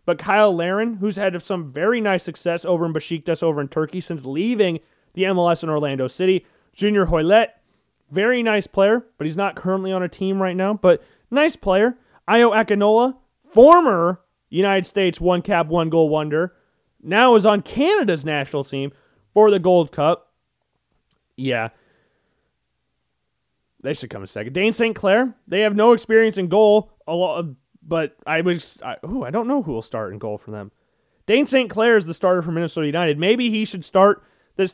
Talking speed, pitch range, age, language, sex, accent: 180 wpm, 160-215 Hz, 30-49, English, male, American